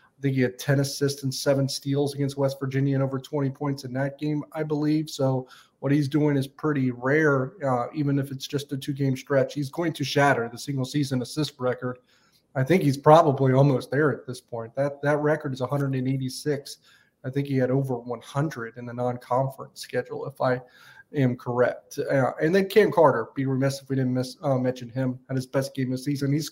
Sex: male